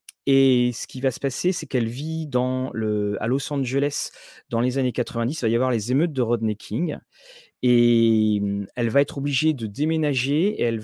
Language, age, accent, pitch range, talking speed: French, 30-49, French, 120-155 Hz, 200 wpm